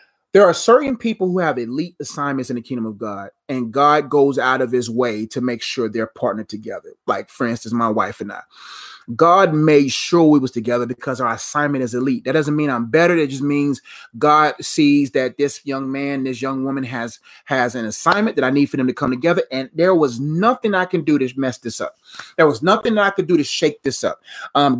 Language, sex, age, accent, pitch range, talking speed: English, male, 30-49, American, 130-175 Hz, 230 wpm